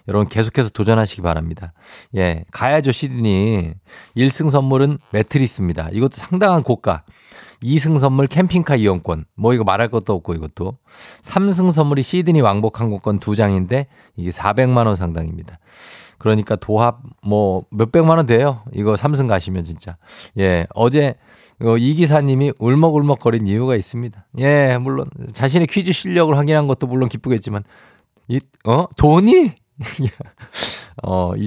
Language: Korean